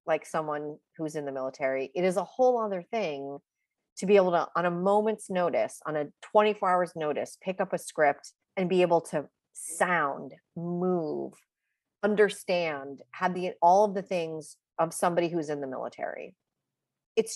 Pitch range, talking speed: 155-190 Hz, 170 wpm